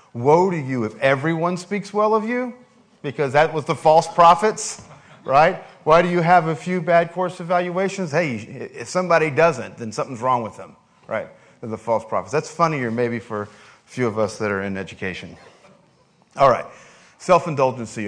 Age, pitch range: 40-59, 120-165 Hz